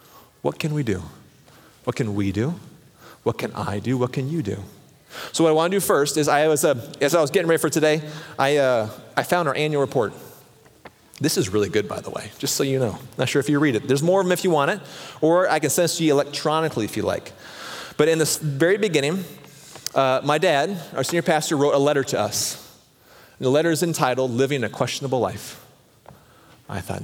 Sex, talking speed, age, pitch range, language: male, 235 wpm, 30-49, 125-165 Hz, English